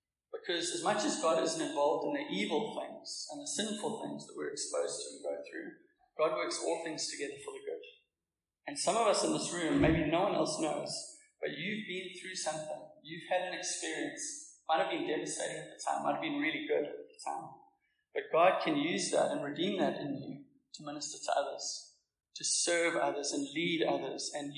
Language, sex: English, male